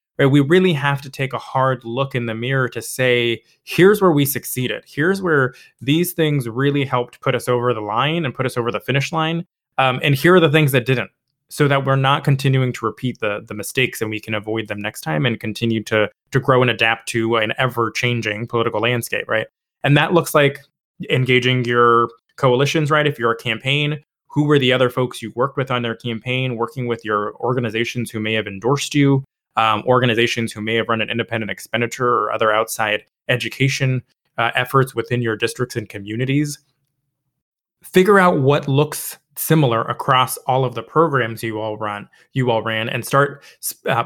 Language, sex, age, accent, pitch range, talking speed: English, male, 20-39, American, 115-140 Hz, 195 wpm